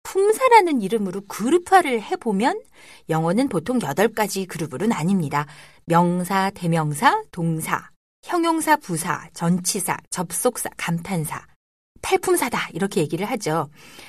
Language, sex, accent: Korean, female, native